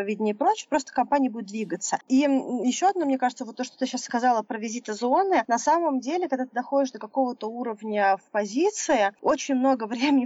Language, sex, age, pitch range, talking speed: Russian, female, 20-39, 210-265 Hz, 200 wpm